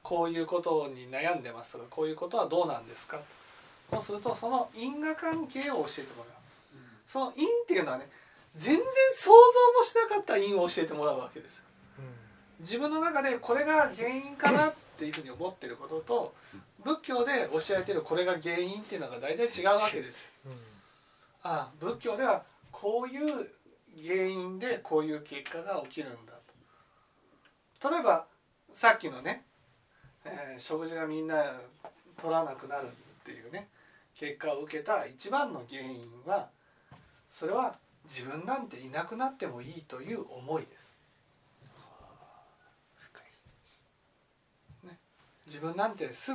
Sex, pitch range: male, 145-240 Hz